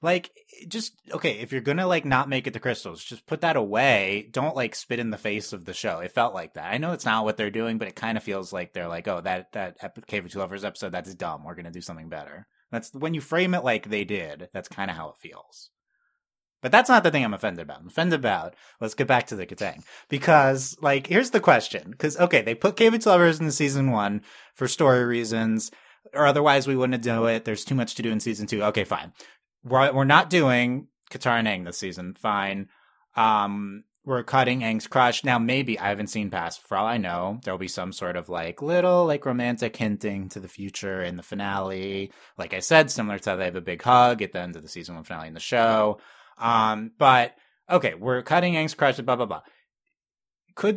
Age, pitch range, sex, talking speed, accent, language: 30-49, 100-140 Hz, male, 235 wpm, American, English